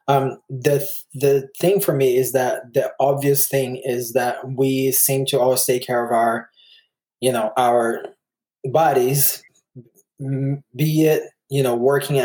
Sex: male